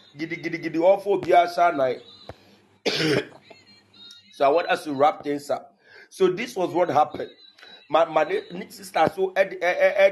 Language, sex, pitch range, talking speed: English, male, 125-170 Hz, 105 wpm